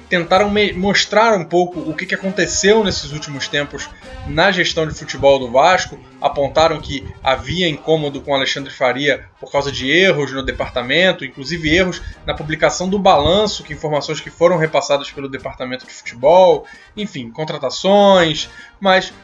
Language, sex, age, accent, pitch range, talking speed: Portuguese, male, 20-39, Brazilian, 145-190 Hz, 150 wpm